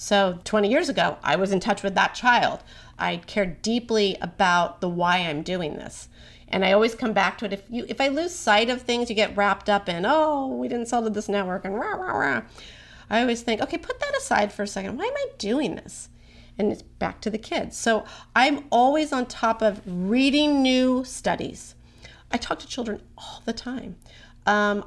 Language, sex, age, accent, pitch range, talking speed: English, female, 40-59, American, 195-255 Hz, 210 wpm